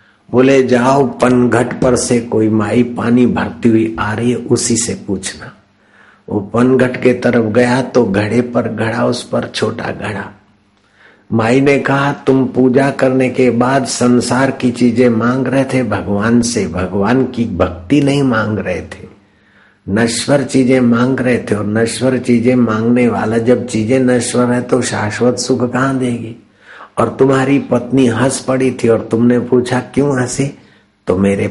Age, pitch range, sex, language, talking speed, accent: 60-79, 100-125 Hz, male, Hindi, 160 wpm, native